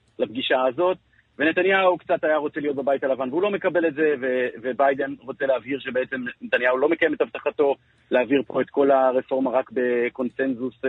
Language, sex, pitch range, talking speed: Hebrew, male, 130-185 Hz, 170 wpm